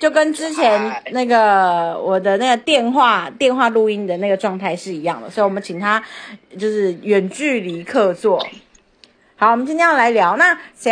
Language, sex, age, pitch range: Chinese, female, 30-49, 185-245 Hz